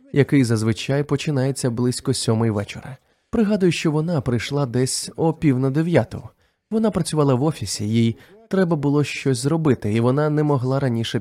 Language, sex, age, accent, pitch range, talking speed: Ukrainian, male, 20-39, native, 120-160 Hz, 155 wpm